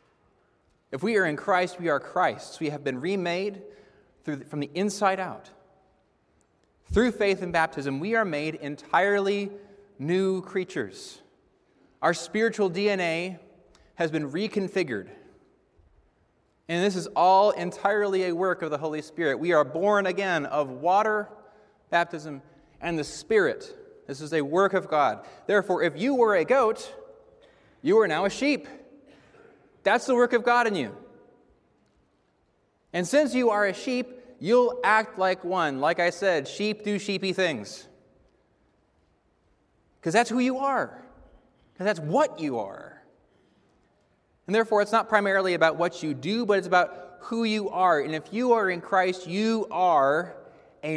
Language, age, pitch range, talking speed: English, 30-49, 165-220 Hz, 155 wpm